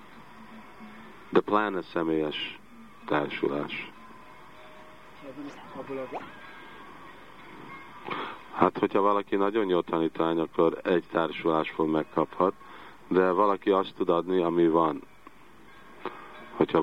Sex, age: male, 50-69